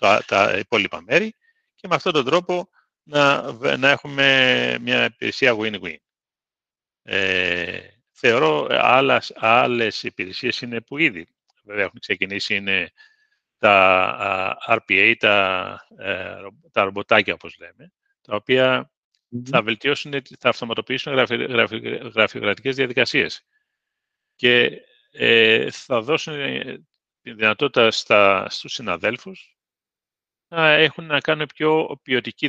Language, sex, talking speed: Greek, male, 100 wpm